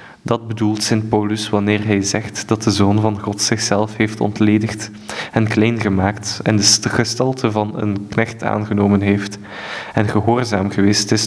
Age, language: 20-39, Dutch